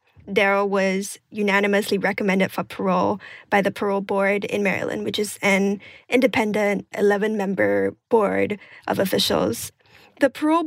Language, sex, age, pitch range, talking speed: English, female, 10-29, 195-220 Hz, 125 wpm